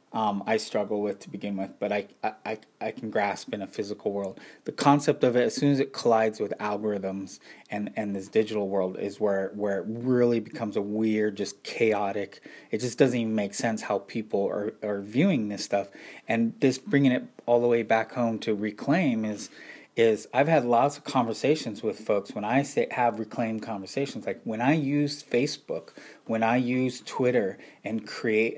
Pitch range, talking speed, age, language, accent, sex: 105-135 Hz, 195 wpm, 20-39, English, American, male